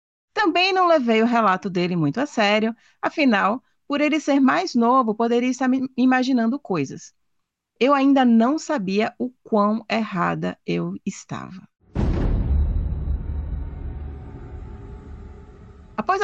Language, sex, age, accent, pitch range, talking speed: Portuguese, female, 30-49, Brazilian, 185-275 Hz, 110 wpm